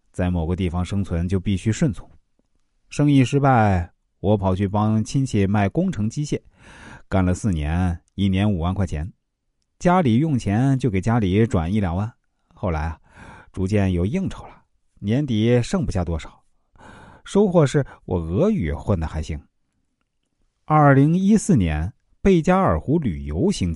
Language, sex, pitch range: Chinese, male, 90-120 Hz